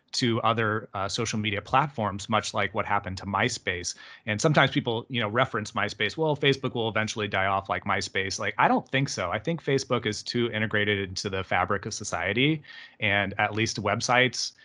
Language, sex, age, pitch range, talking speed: English, male, 30-49, 105-125 Hz, 195 wpm